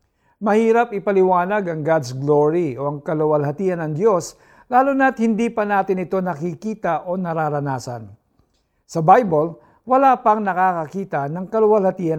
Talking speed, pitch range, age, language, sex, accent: 130 wpm, 155-215 Hz, 50-69, Filipino, male, native